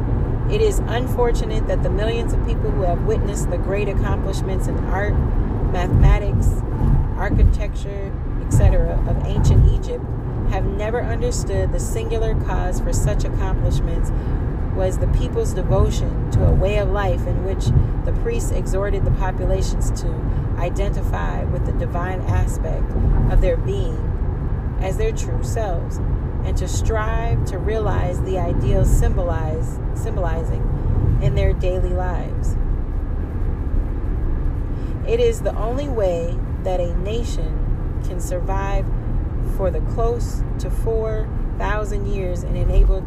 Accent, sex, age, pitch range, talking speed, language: American, female, 40-59, 90-115 Hz, 125 wpm, English